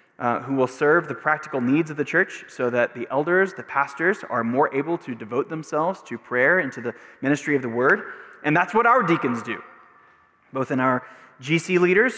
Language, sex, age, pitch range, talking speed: English, male, 20-39, 125-175 Hz, 205 wpm